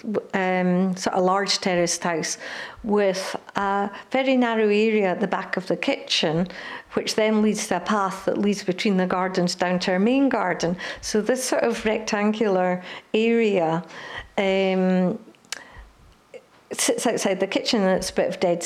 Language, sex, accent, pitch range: English, female, British, 185-220 Hz